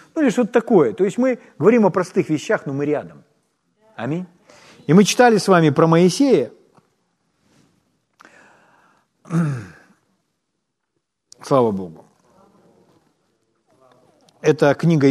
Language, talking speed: Ukrainian, 105 wpm